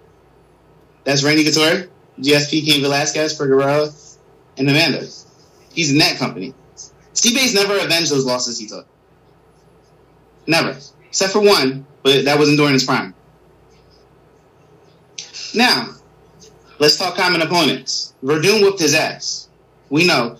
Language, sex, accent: English, male, American